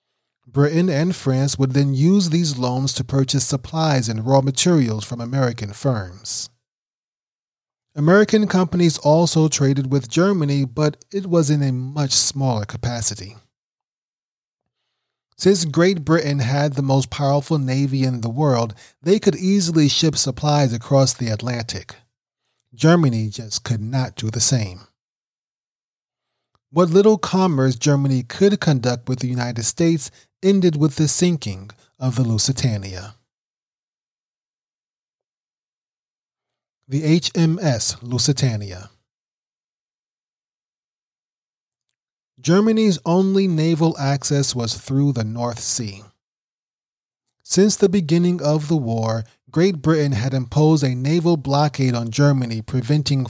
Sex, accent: male, American